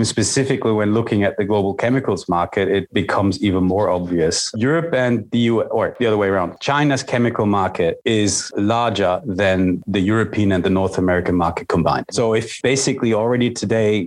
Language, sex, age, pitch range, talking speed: Danish, male, 30-49, 100-120 Hz, 175 wpm